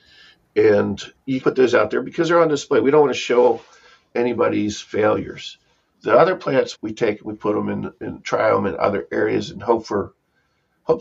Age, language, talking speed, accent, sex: 50-69, English, 195 wpm, American, male